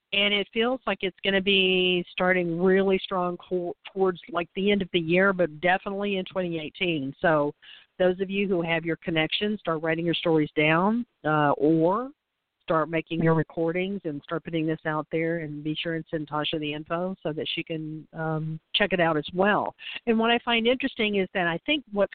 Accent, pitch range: American, 165-200 Hz